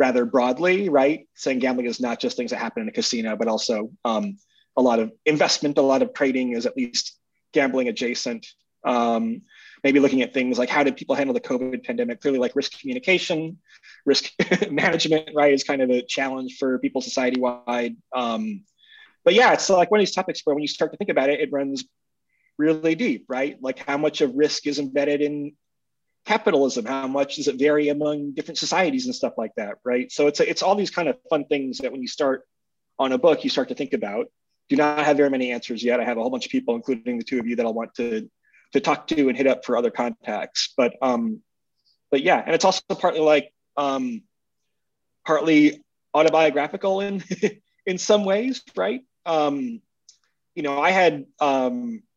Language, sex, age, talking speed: English, male, 30-49, 205 wpm